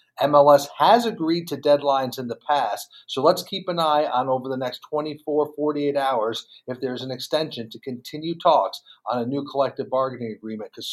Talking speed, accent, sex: 185 wpm, American, male